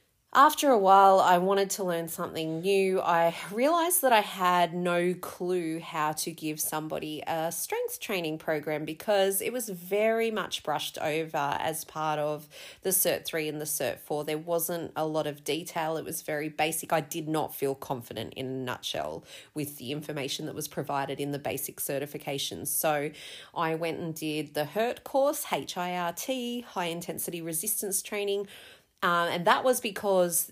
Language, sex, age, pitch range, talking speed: English, female, 30-49, 155-190 Hz, 170 wpm